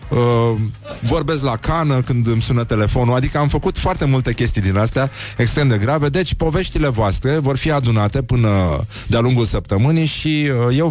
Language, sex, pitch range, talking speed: Romanian, male, 105-135 Hz, 165 wpm